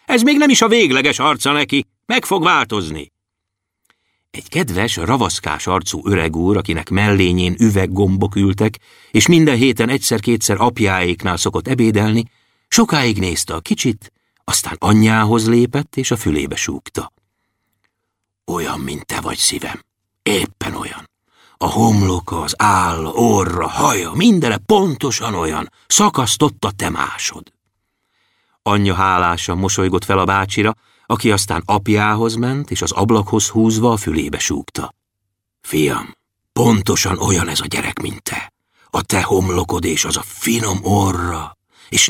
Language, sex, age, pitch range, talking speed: Hungarian, male, 60-79, 95-120 Hz, 130 wpm